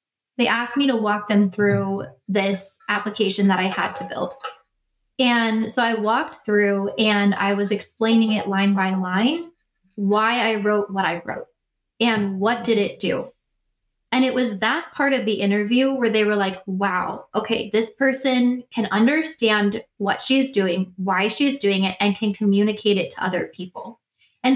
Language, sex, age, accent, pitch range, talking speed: English, female, 20-39, American, 200-250 Hz, 175 wpm